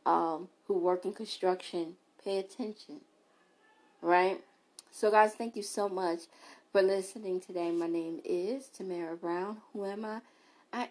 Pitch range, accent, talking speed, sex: 180-215 Hz, American, 145 wpm, female